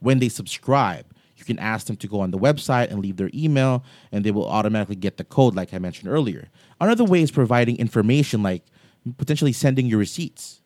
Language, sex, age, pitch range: English, male, 30-49, 105-135 Hz